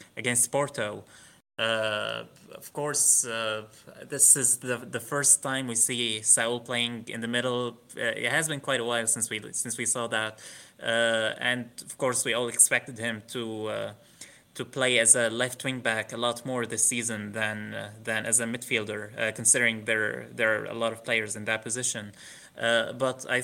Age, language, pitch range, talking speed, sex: 20-39, English, 110-130 Hz, 190 wpm, male